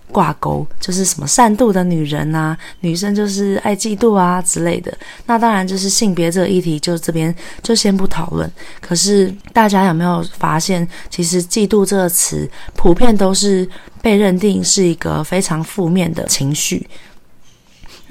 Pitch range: 170-200 Hz